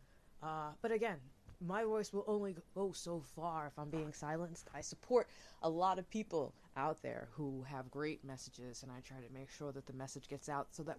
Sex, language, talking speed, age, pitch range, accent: female, English, 215 wpm, 20-39, 130-170 Hz, American